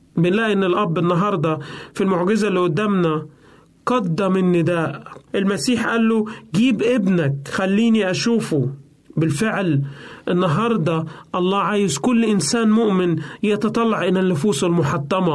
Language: Arabic